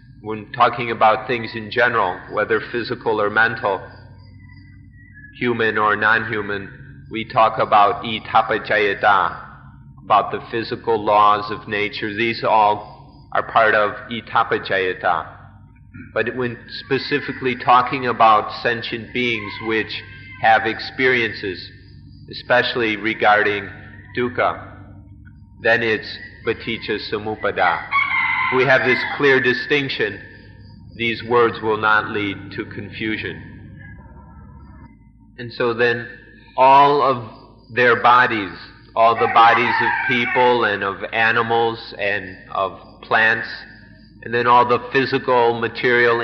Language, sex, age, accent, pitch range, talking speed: English, male, 40-59, American, 105-120 Hz, 105 wpm